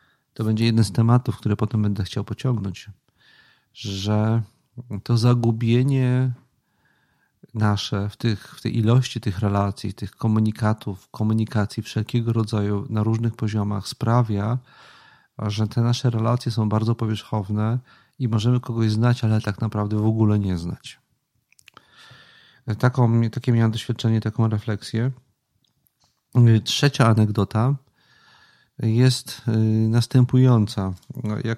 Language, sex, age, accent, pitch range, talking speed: Polish, male, 40-59, native, 105-120 Hz, 110 wpm